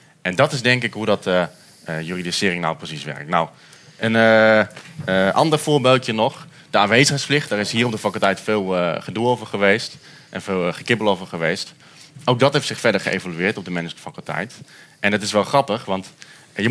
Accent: Dutch